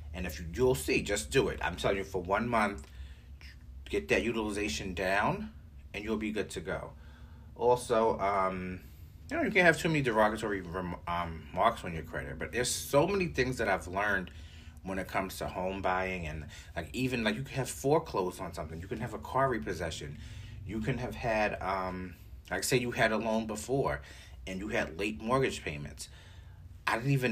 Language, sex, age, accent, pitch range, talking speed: English, male, 30-49, American, 80-115 Hz, 200 wpm